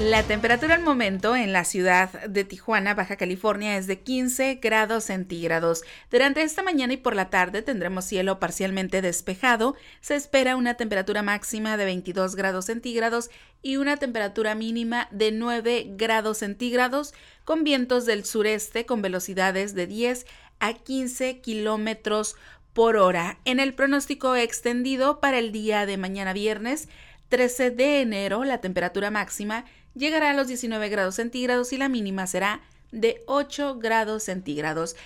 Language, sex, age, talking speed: Spanish, female, 40-59, 150 wpm